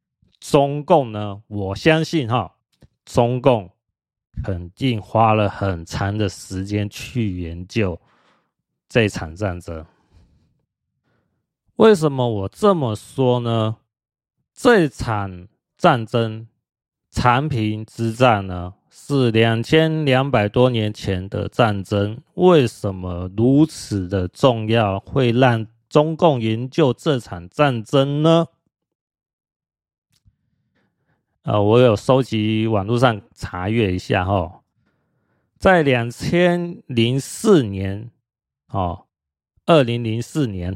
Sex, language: male, Chinese